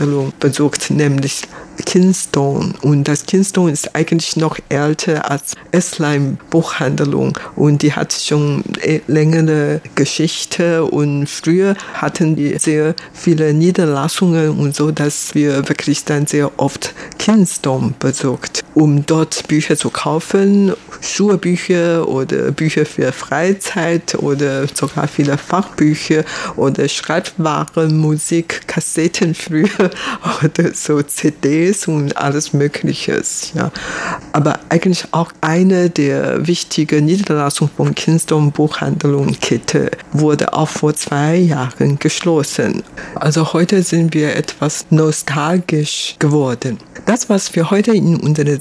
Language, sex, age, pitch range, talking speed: German, female, 50-69, 145-170 Hz, 115 wpm